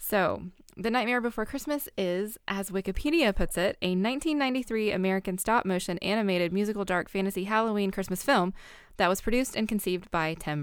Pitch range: 165-205 Hz